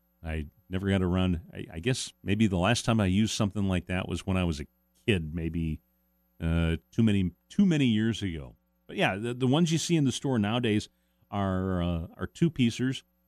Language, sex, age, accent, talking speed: English, male, 40-59, American, 210 wpm